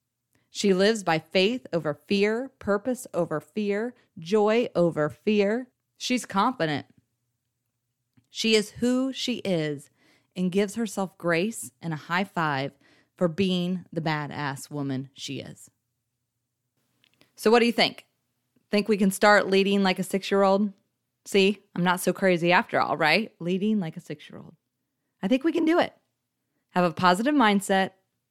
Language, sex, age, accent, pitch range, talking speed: English, female, 30-49, American, 155-210 Hz, 145 wpm